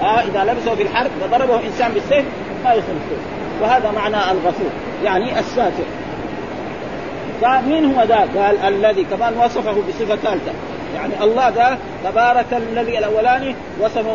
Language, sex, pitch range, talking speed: Arabic, male, 215-255 Hz, 140 wpm